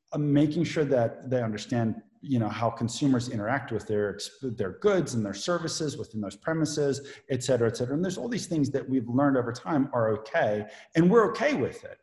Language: English